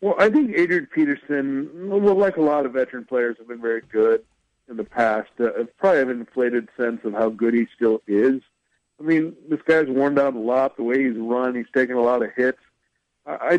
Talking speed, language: 215 wpm, English